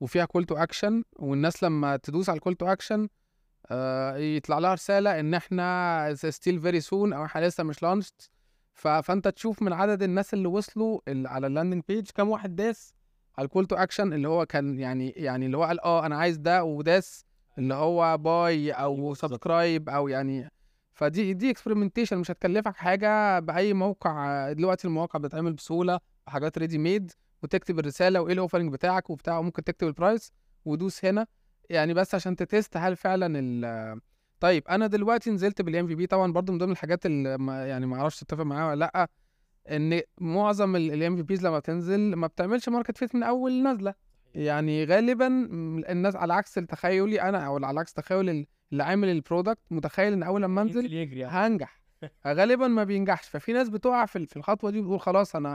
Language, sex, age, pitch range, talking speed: Arabic, male, 20-39, 155-195 Hz, 170 wpm